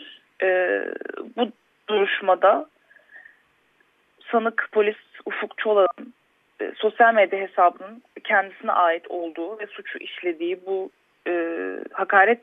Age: 30-49